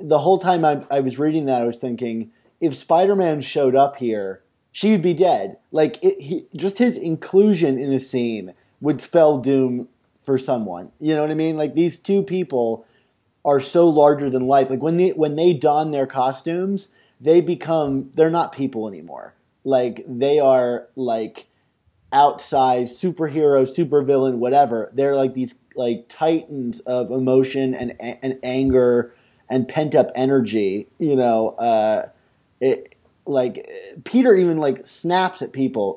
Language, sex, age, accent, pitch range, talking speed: English, male, 20-39, American, 125-155 Hz, 160 wpm